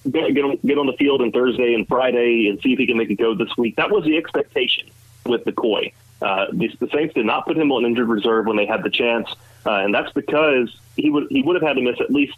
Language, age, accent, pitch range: English, 30-49, American, 115-150 Hz